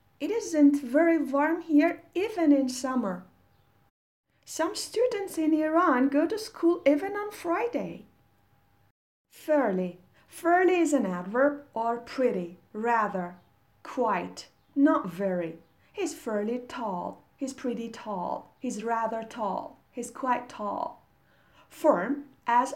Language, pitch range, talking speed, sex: Persian, 200-290 Hz, 115 wpm, female